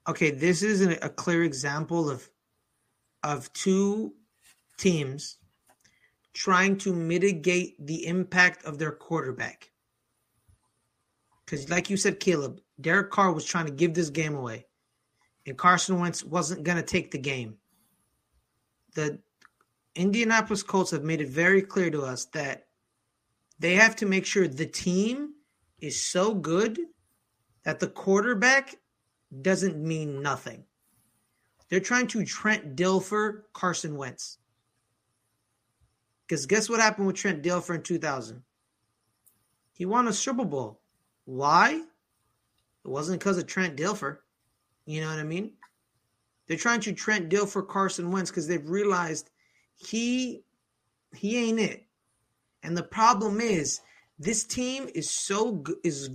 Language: English